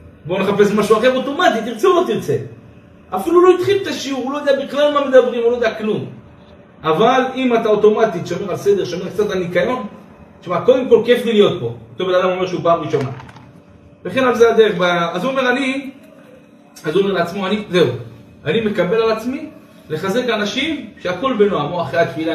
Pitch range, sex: 145-225 Hz, male